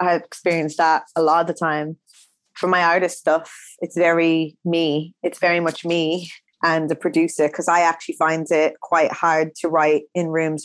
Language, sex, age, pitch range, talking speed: English, female, 20-39, 150-165 Hz, 185 wpm